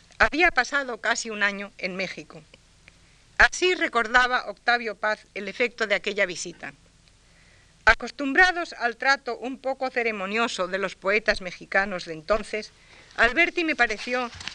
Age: 50-69